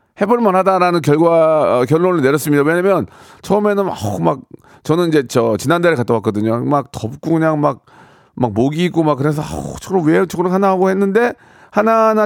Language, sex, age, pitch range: Korean, male, 40-59, 125-180 Hz